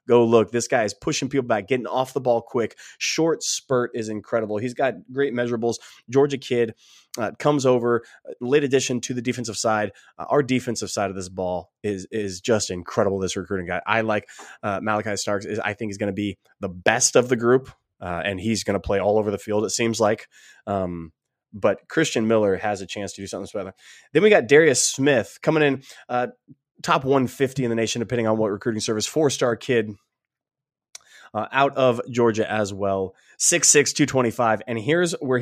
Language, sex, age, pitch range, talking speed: English, male, 20-39, 105-135 Hz, 200 wpm